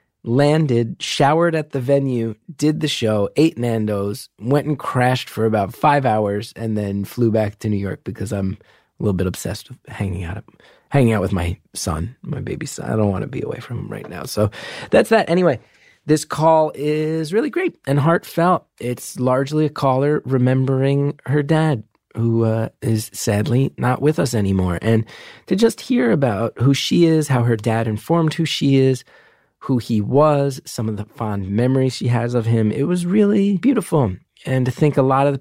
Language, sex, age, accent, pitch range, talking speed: English, male, 30-49, American, 110-150 Hz, 195 wpm